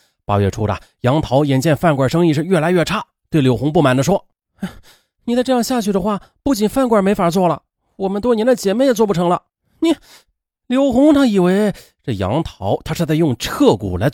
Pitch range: 135-220 Hz